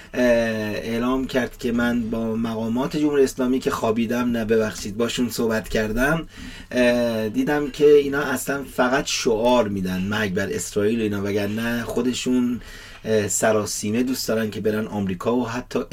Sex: male